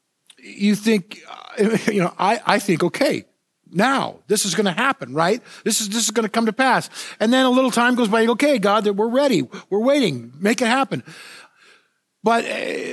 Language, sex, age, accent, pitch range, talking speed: English, male, 50-69, American, 180-250 Hz, 195 wpm